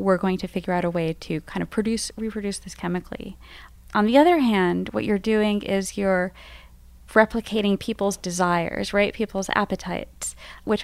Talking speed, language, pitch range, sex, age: 165 wpm, English, 175-210 Hz, female, 20-39